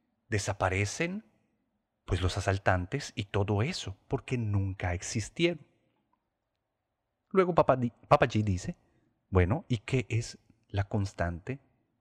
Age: 40-59